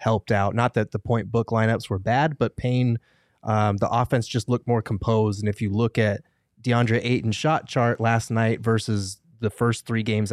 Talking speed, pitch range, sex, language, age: 205 wpm, 105-120 Hz, male, English, 20-39